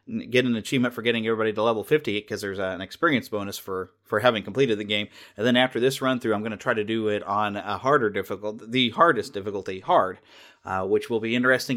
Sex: male